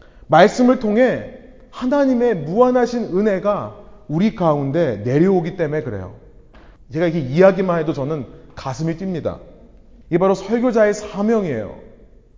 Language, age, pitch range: Korean, 30-49, 130-210 Hz